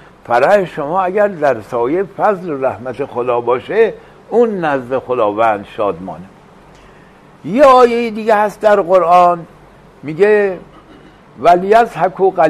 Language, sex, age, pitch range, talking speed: English, male, 60-79, 140-195 Hz, 115 wpm